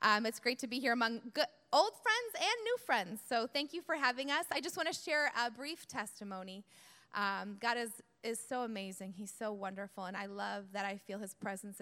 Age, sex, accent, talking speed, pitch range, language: 20-39, female, American, 225 wpm, 205-275 Hz, English